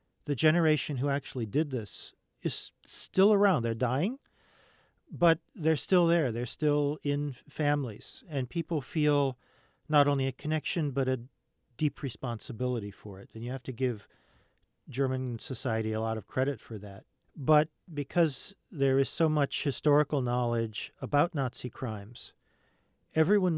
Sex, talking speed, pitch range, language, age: male, 145 wpm, 125-155 Hz, English, 40-59